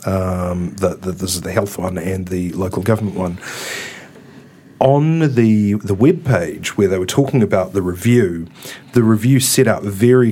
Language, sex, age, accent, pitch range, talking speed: English, male, 40-59, Australian, 95-120 Hz, 175 wpm